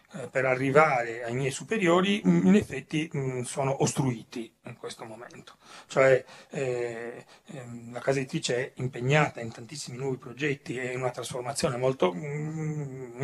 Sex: male